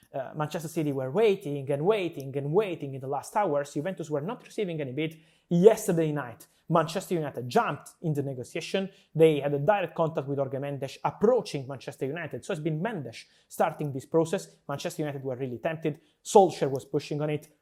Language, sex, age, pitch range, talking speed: English, male, 20-39, 140-175 Hz, 185 wpm